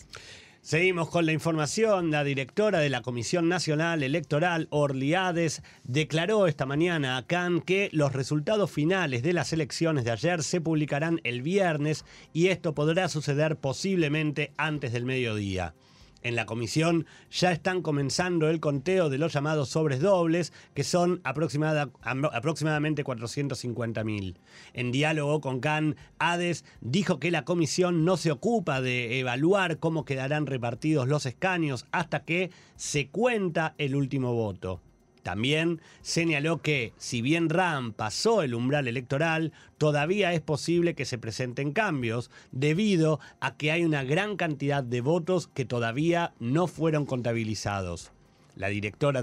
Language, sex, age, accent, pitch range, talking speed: Spanish, male, 30-49, Argentinian, 130-170 Hz, 140 wpm